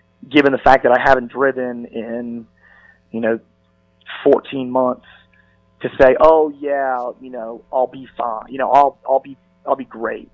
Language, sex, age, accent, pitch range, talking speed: English, male, 30-49, American, 120-135 Hz, 170 wpm